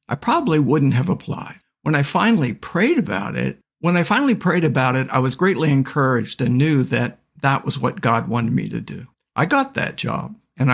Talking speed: 205 wpm